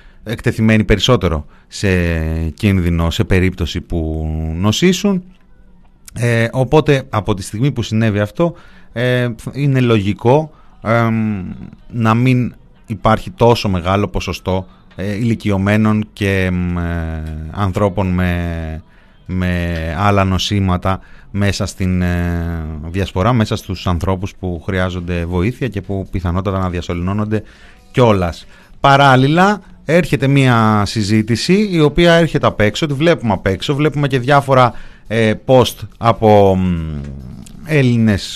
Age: 30-49